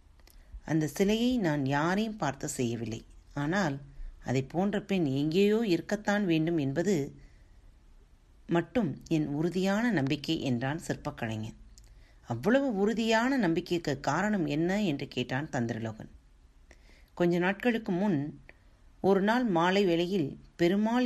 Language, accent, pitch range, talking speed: Tamil, native, 130-200 Hz, 100 wpm